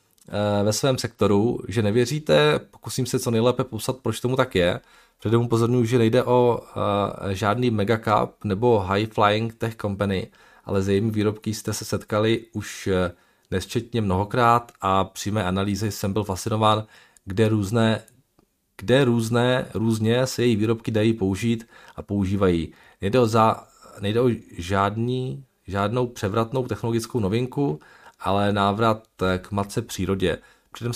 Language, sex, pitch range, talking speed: Czech, male, 100-120 Hz, 135 wpm